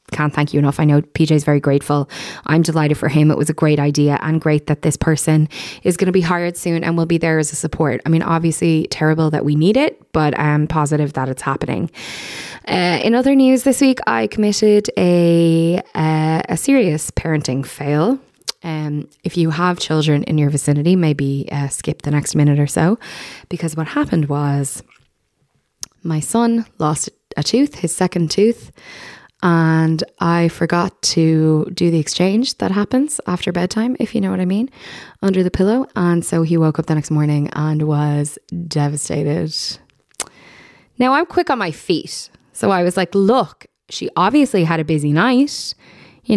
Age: 20-39